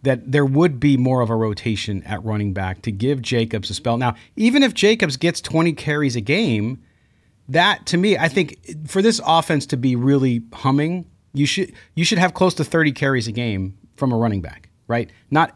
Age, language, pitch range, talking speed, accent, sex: 40-59, English, 110-145 Hz, 210 wpm, American, male